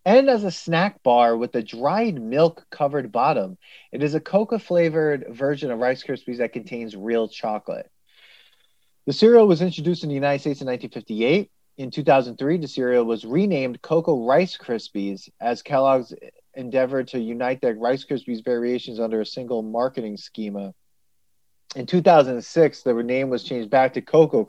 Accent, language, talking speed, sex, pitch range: American, English, 155 wpm, male, 115-145 Hz